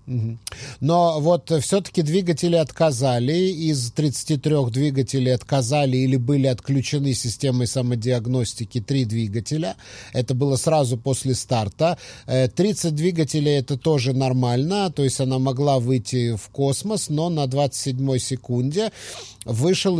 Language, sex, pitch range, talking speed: English, male, 125-150 Hz, 115 wpm